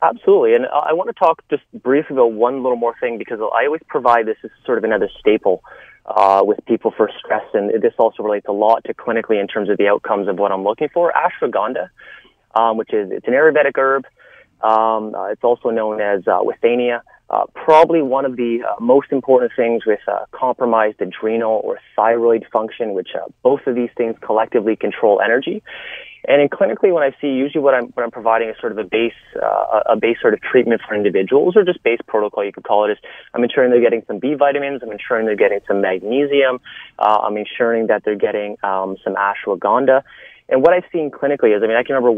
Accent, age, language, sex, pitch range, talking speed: American, 30-49, English, male, 110-160 Hz, 220 wpm